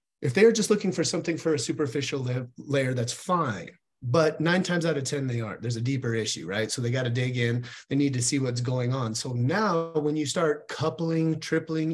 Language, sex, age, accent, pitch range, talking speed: English, male, 30-49, American, 125-155 Hz, 225 wpm